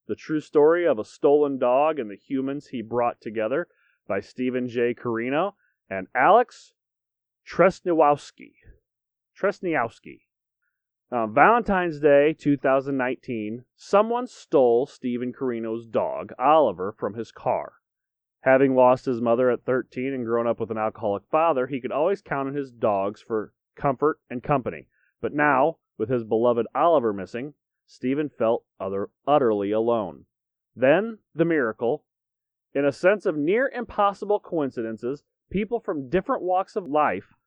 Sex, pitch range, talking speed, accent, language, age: male, 120-180 Hz, 135 wpm, American, English, 30-49